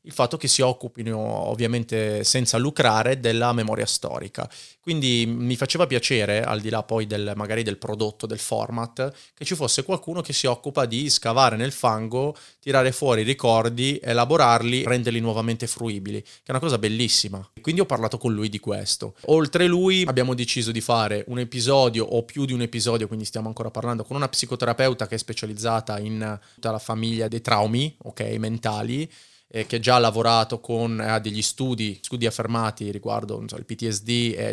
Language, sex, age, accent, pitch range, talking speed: Italian, male, 30-49, native, 110-130 Hz, 180 wpm